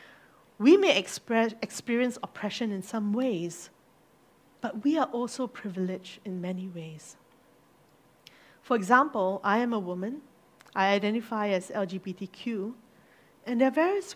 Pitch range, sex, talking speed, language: 190-245 Hz, female, 125 wpm, English